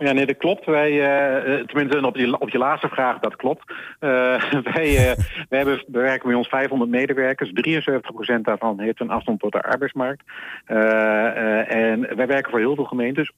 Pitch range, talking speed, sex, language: 110-140 Hz, 195 wpm, male, Dutch